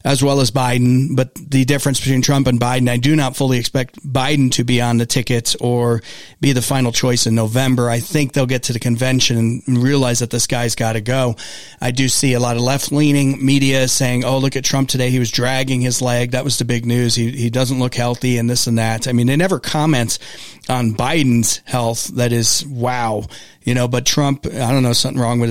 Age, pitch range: 40-59, 120-140 Hz